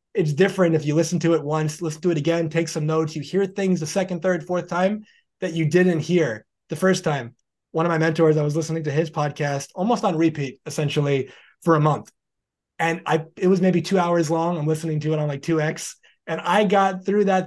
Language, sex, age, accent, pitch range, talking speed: English, male, 20-39, American, 150-185 Hz, 230 wpm